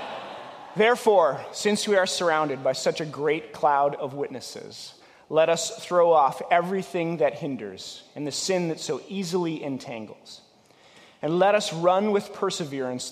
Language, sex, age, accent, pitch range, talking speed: English, male, 30-49, American, 130-170 Hz, 145 wpm